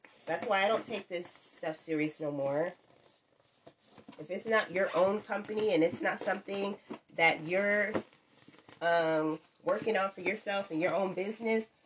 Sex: female